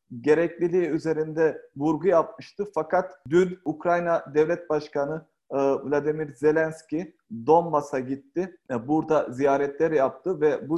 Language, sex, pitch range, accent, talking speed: Turkish, male, 150-180 Hz, native, 100 wpm